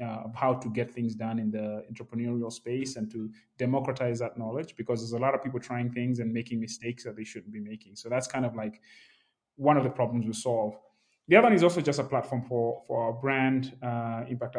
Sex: male